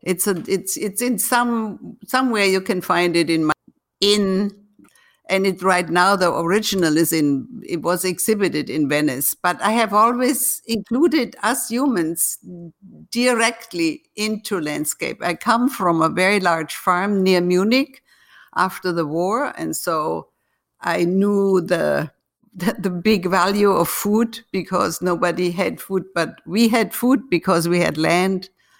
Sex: female